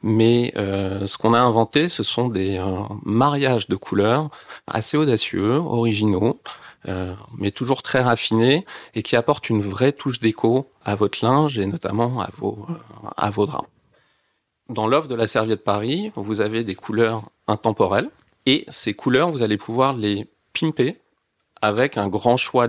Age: 40-59